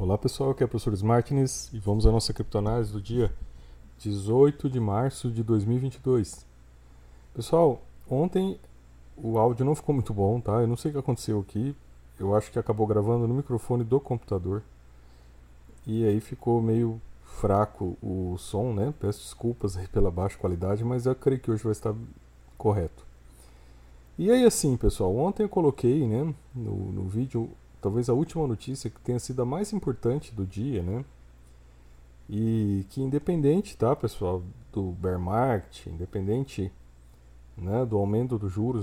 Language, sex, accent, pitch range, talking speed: Portuguese, male, Brazilian, 85-120 Hz, 160 wpm